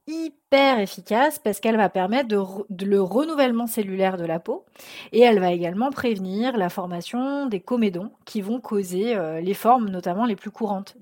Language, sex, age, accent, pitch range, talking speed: French, female, 30-49, French, 195-250 Hz, 185 wpm